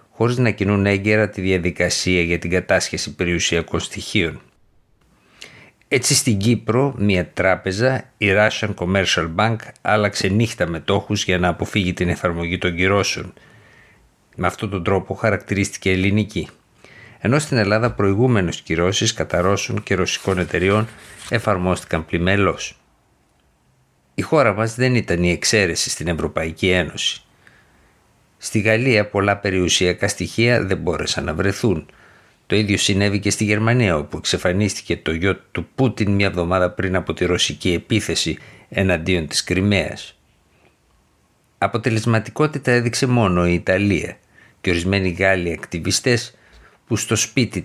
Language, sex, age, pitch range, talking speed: Greek, male, 50-69, 90-110 Hz, 125 wpm